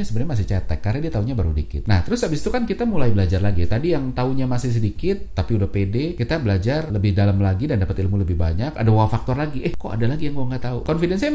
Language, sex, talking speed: Indonesian, male, 255 wpm